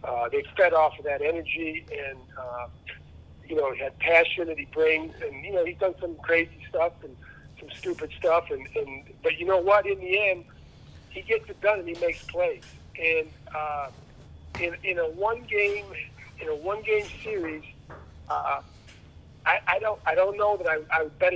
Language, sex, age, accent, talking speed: English, male, 50-69, American, 195 wpm